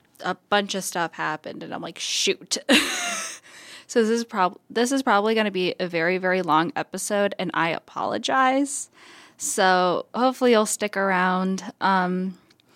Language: English